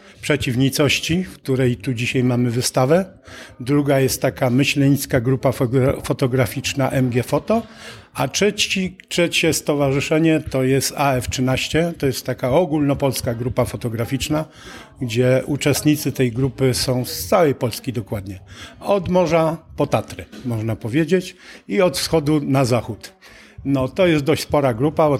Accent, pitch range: native, 130-155 Hz